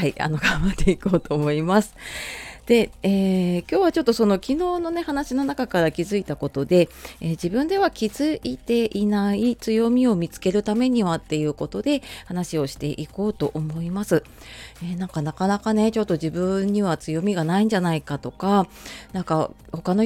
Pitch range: 155-220 Hz